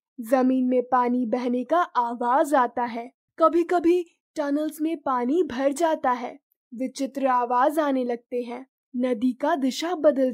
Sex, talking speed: female, 145 wpm